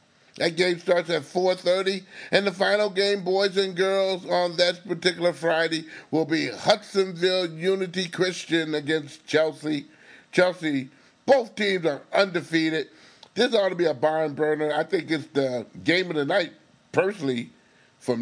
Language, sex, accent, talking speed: English, male, American, 145 wpm